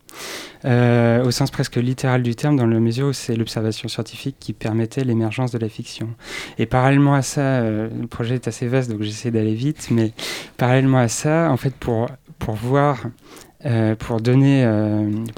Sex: male